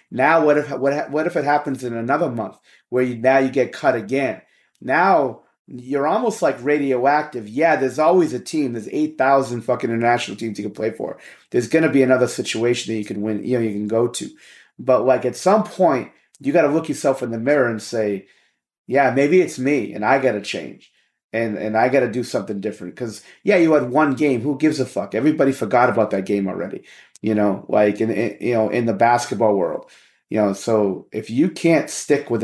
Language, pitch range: English, 110-145 Hz